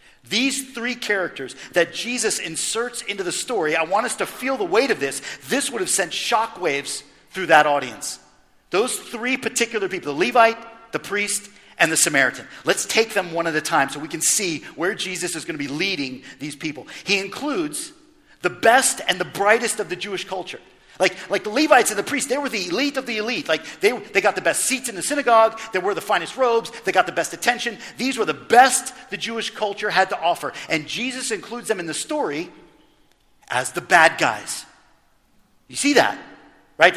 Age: 50-69